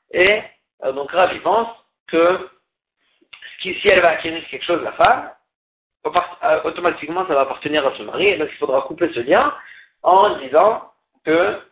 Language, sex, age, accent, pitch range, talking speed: French, male, 50-69, French, 145-205 Hz, 160 wpm